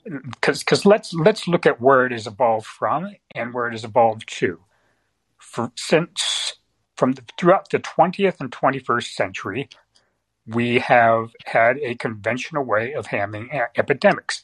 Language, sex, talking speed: English, male, 150 wpm